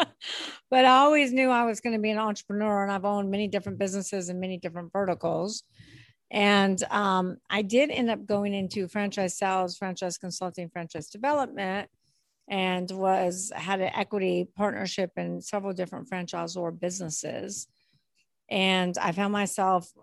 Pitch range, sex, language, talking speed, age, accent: 185-230 Hz, female, English, 155 wpm, 50-69, American